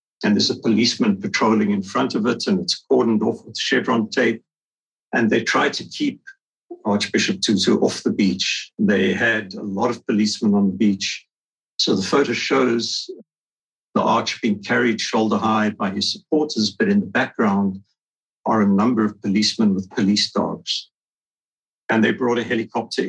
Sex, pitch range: male, 100-115 Hz